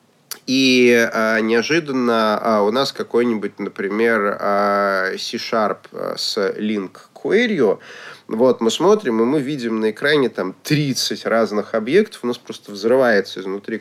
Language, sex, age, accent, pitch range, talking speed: Russian, male, 30-49, native, 110-155 Hz, 130 wpm